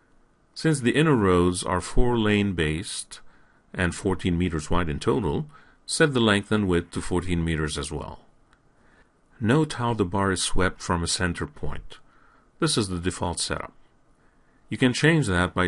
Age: 50-69